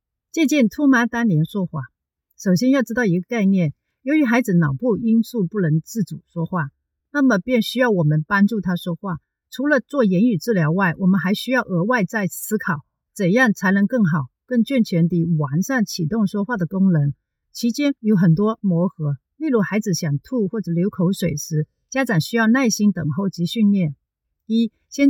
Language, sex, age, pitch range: Chinese, female, 50-69, 175-235 Hz